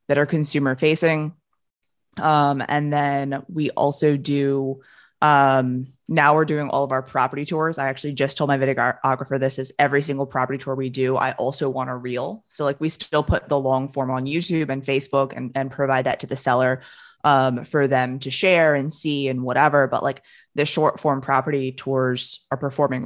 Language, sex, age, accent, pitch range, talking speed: English, female, 20-39, American, 130-145 Hz, 195 wpm